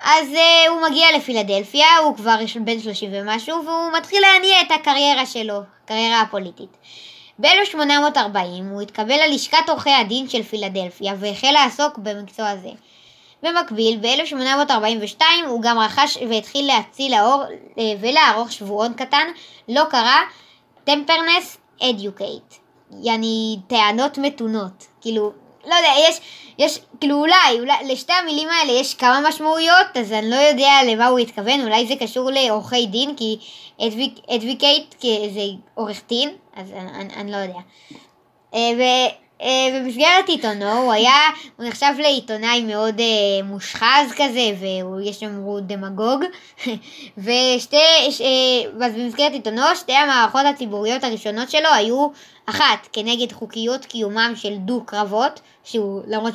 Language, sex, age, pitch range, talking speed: Hebrew, male, 20-39, 220-290 Hz, 130 wpm